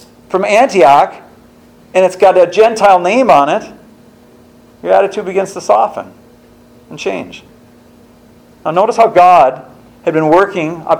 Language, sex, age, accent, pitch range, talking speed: English, male, 50-69, American, 150-195 Hz, 135 wpm